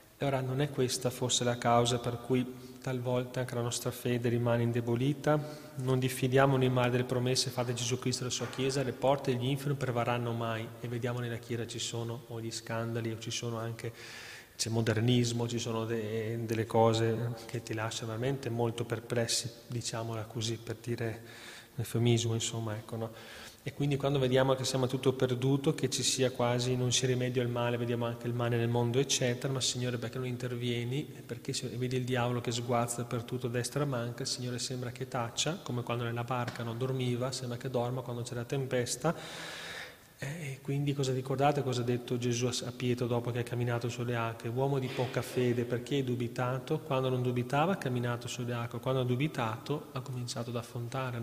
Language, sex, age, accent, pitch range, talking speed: Italian, male, 20-39, native, 120-130 Hz, 195 wpm